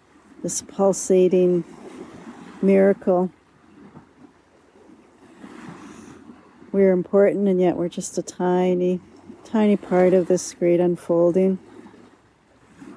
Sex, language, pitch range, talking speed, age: female, English, 180-200 Hz, 80 wpm, 50-69